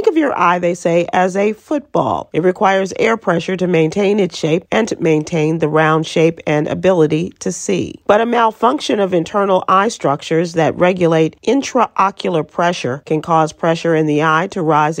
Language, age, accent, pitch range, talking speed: English, 40-59, American, 155-190 Hz, 180 wpm